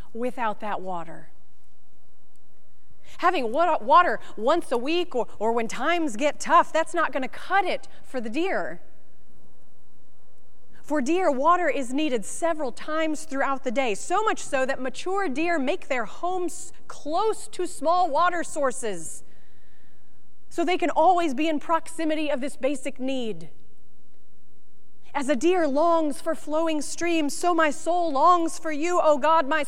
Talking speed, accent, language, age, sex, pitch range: 150 wpm, American, English, 30-49, female, 255-325 Hz